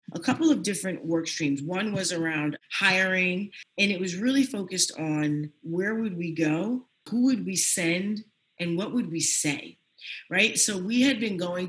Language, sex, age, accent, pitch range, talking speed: English, female, 40-59, American, 155-205 Hz, 180 wpm